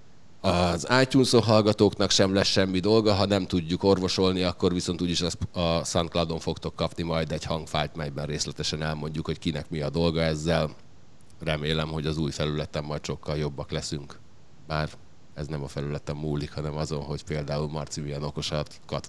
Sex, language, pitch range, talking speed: male, Hungarian, 80-90 Hz, 165 wpm